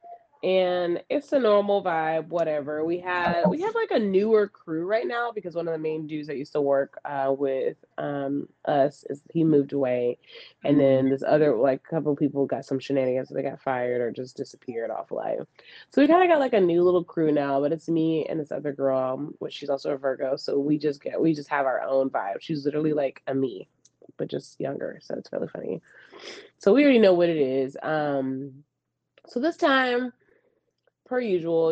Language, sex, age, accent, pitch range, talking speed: English, female, 20-39, American, 140-185 Hz, 210 wpm